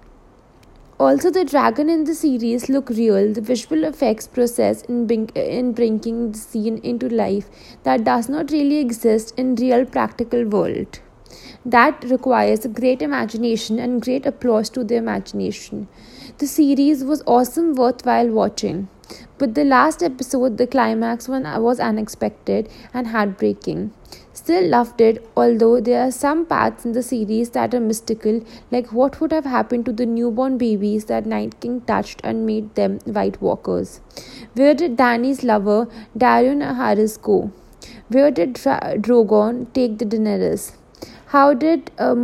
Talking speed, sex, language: 145 wpm, female, English